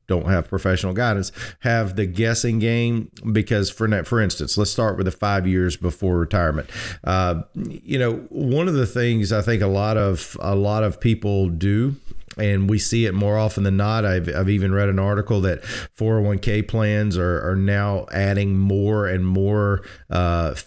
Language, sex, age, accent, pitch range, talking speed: English, male, 40-59, American, 95-115 Hz, 185 wpm